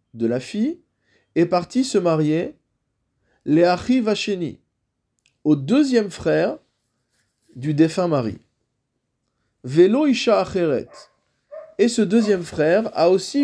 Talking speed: 95 wpm